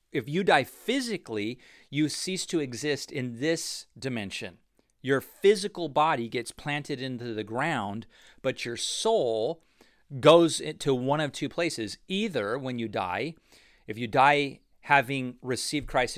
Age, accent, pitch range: 40-59, American, 120-150 Hz